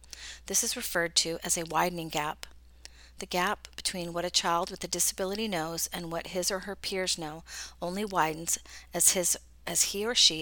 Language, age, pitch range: English, 40-59, 140-185 Hz